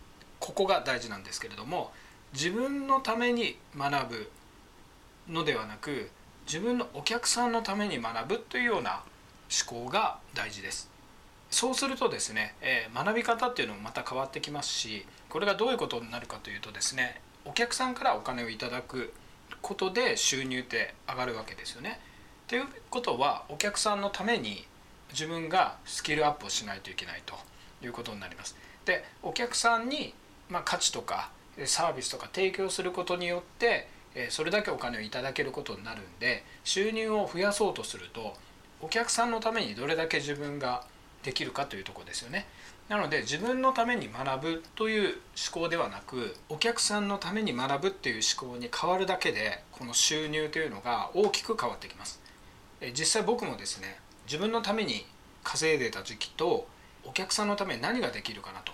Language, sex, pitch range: Japanese, male, 140-230 Hz